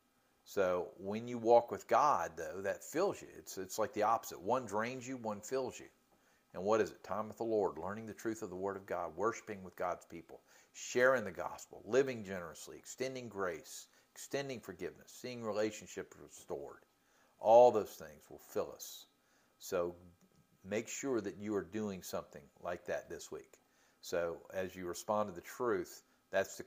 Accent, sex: American, male